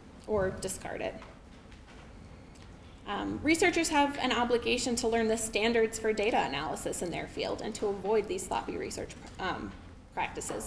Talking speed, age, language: 145 wpm, 20-39, English